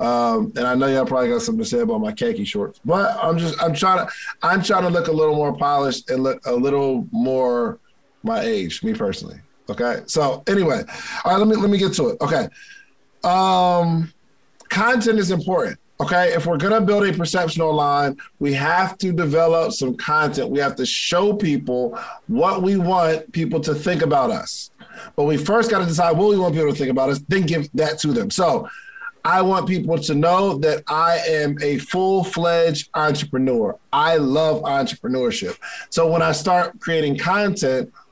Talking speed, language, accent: 185 wpm, English, American